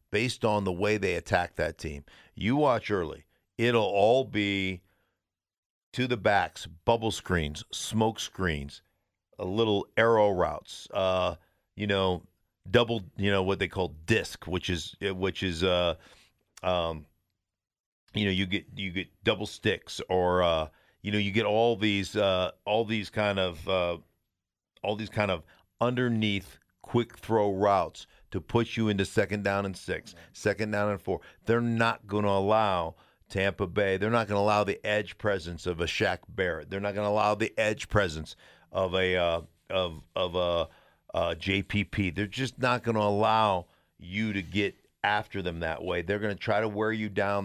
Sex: male